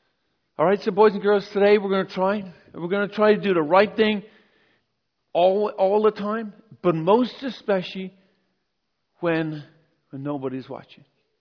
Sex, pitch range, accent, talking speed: male, 150-200 Hz, American, 170 wpm